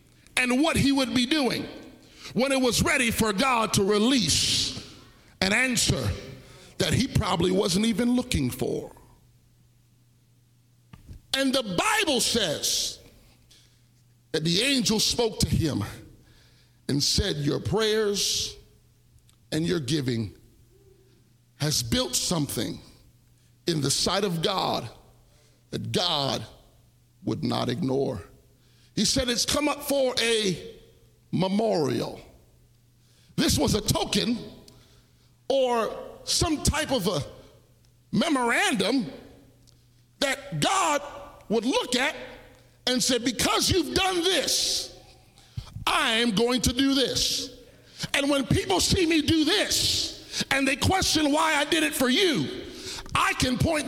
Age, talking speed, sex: 50-69, 120 wpm, male